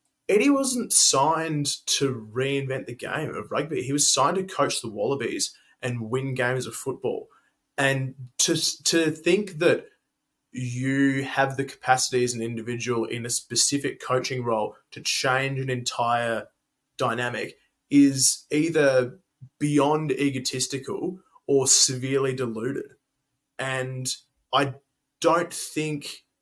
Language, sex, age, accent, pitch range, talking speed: English, male, 20-39, Australian, 125-150 Hz, 125 wpm